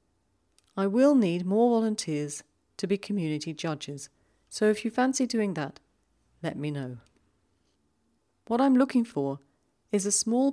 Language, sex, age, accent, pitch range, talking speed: English, female, 40-59, British, 140-210 Hz, 140 wpm